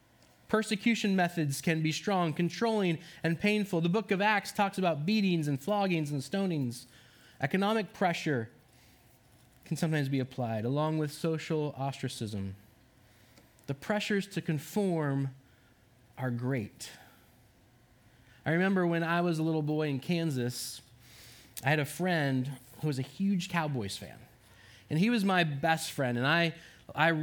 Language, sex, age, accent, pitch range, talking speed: English, male, 20-39, American, 130-205 Hz, 140 wpm